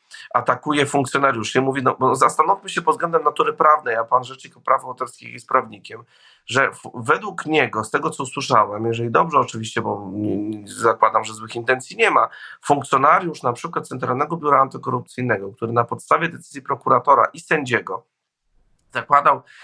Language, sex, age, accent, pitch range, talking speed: Polish, male, 40-59, native, 125-155 Hz, 155 wpm